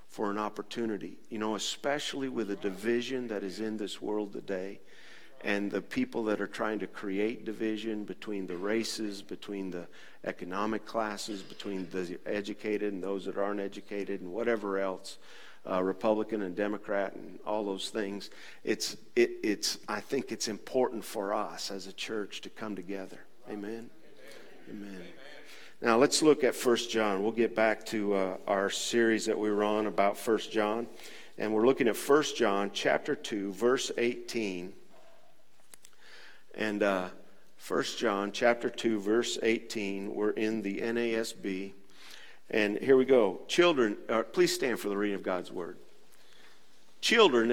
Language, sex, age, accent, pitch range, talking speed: English, male, 50-69, American, 100-120 Hz, 155 wpm